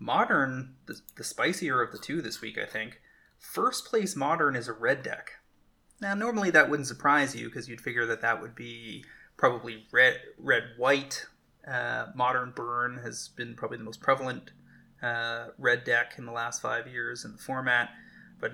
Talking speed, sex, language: 185 wpm, male, English